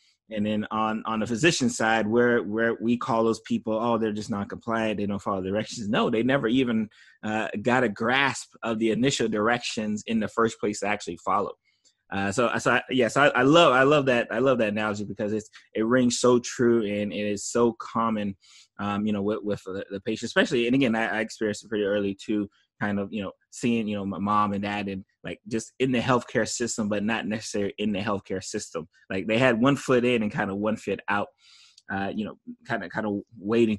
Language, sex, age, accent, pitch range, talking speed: English, male, 20-39, American, 105-125 Hz, 235 wpm